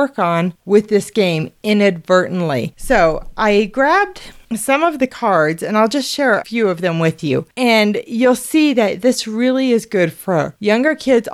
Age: 30-49